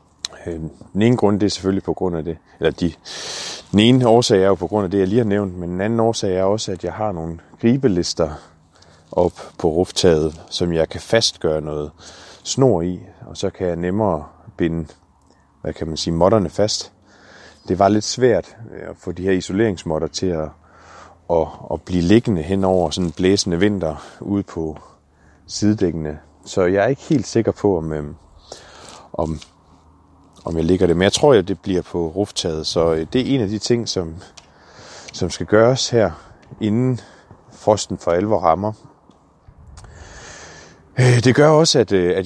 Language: Danish